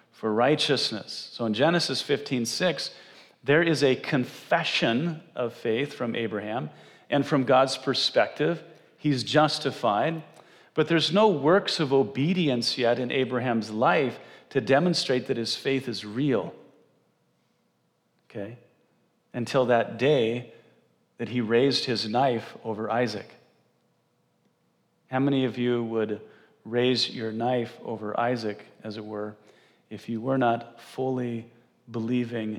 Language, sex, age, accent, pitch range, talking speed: English, male, 40-59, American, 110-135 Hz, 125 wpm